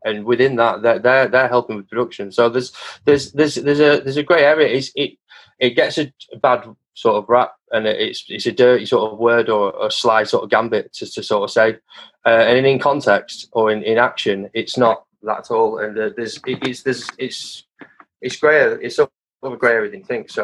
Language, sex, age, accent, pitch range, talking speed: English, male, 20-39, British, 110-145 Hz, 225 wpm